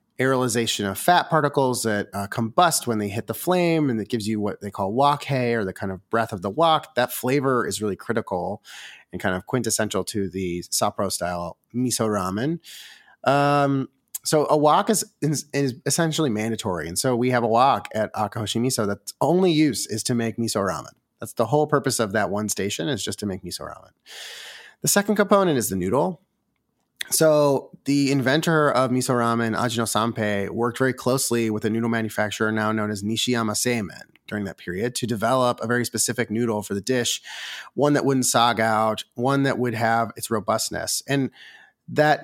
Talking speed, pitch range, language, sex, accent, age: 190 wpm, 110-140 Hz, English, male, American, 30-49